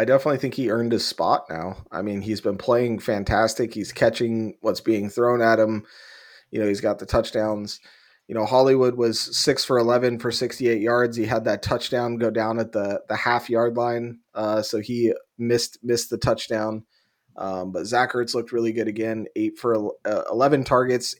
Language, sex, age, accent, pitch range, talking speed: English, male, 30-49, American, 110-125 Hz, 190 wpm